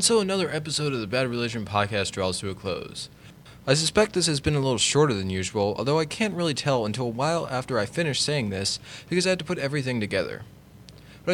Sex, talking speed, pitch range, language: male, 235 wpm, 110-155 Hz, English